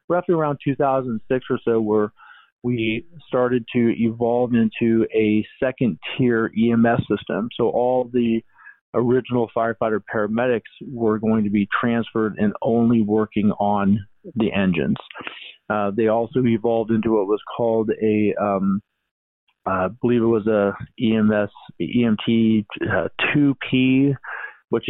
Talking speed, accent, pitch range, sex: 125 wpm, American, 105-120 Hz, male